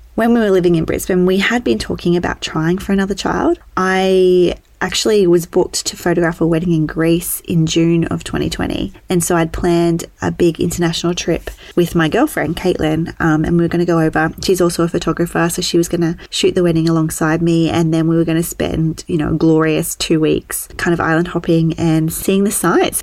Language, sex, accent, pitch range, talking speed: English, female, Australian, 165-185 Hz, 215 wpm